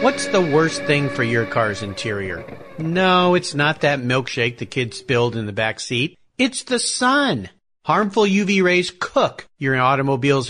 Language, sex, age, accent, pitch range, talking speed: English, male, 40-59, American, 130-210 Hz, 165 wpm